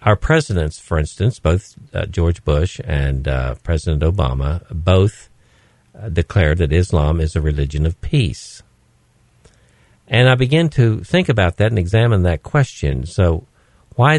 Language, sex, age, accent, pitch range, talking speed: English, male, 50-69, American, 80-115 Hz, 150 wpm